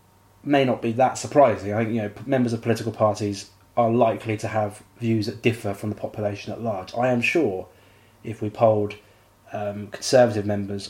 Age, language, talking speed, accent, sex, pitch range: 20-39, English, 185 wpm, British, male, 105-120 Hz